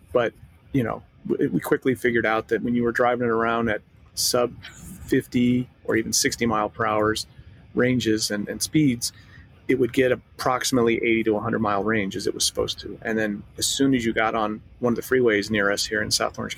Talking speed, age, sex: 215 wpm, 30-49, male